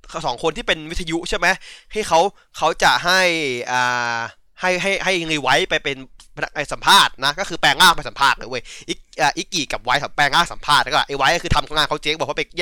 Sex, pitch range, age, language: male, 125-180 Hz, 20-39, Thai